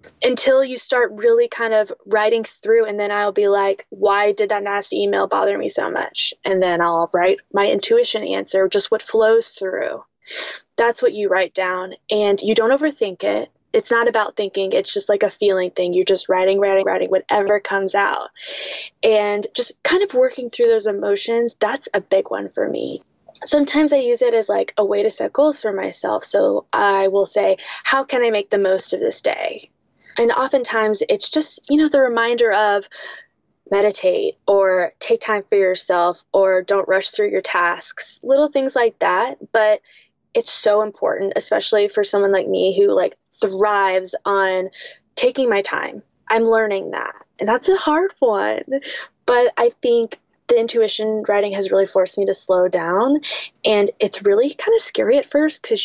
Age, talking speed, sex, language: 10-29, 185 wpm, female, English